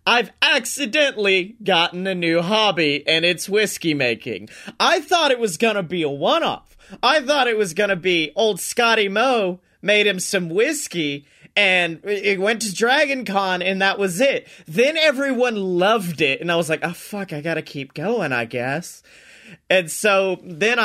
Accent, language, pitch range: American, English, 165-215 Hz